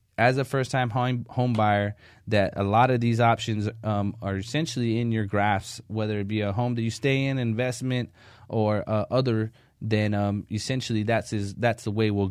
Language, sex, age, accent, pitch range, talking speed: English, male, 20-39, American, 110-125 Hz, 190 wpm